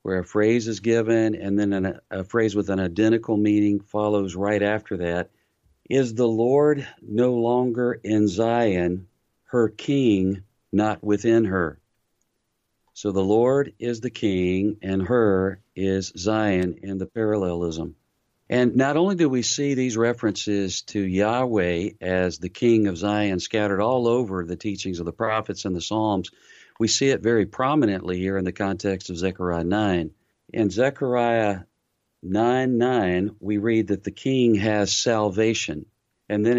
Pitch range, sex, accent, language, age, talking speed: 95-115 Hz, male, American, English, 50-69, 150 wpm